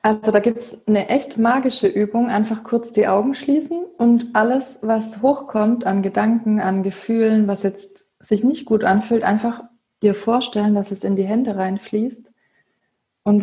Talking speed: 165 wpm